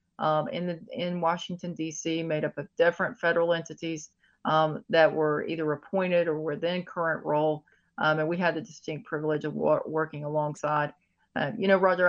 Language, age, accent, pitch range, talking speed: English, 30-49, American, 150-175 Hz, 185 wpm